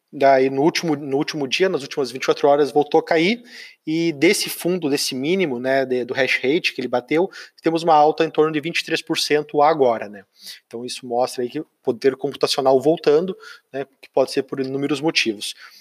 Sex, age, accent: male, 20-39, Brazilian